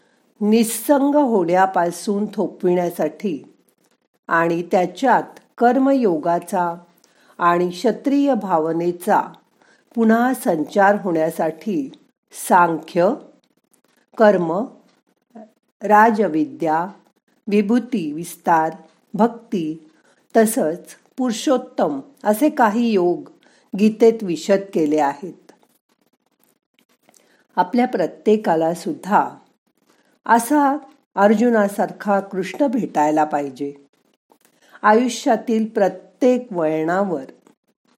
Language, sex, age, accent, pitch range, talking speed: Marathi, female, 50-69, native, 175-235 Hz, 60 wpm